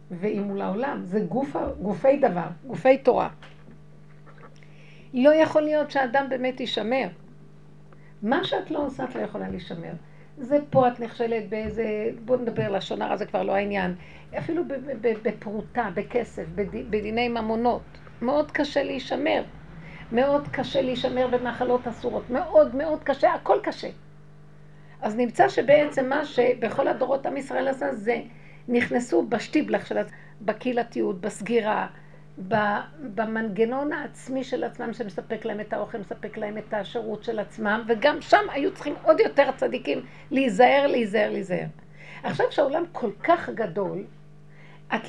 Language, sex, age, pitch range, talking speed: Hebrew, female, 50-69, 210-270 Hz, 135 wpm